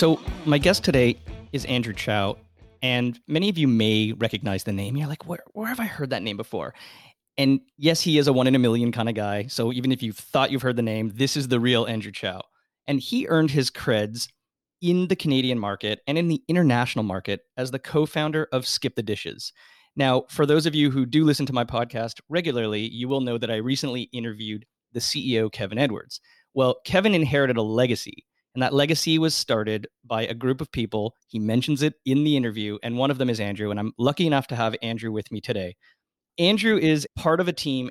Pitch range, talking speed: 115-150 Hz, 220 wpm